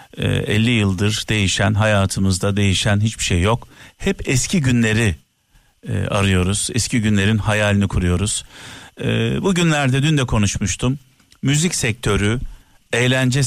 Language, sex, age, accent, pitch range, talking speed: Turkish, male, 50-69, native, 110-140 Hz, 105 wpm